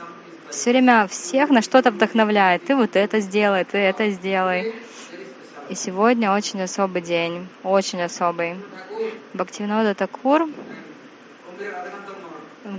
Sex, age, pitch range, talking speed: female, 20-39, 180-215 Hz, 110 wpm